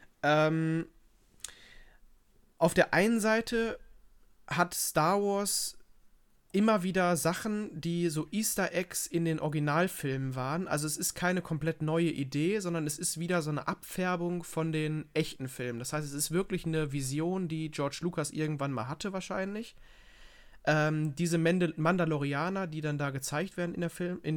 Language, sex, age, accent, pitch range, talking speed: German, male, 30-49, German, 140-170 Hz, 150 wpm